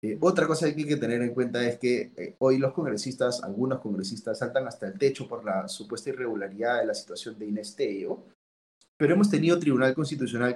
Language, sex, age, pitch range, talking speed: Spanish, male, 30-49, 125-170 Hz, 200 wpm